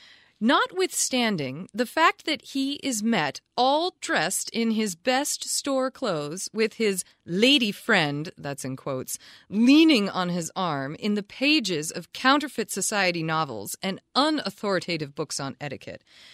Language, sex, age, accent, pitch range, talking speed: English, female, 30-49, American, 165-245 Hz, 135 wpm